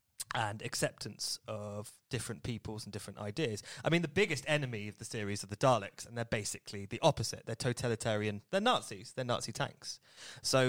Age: 20-39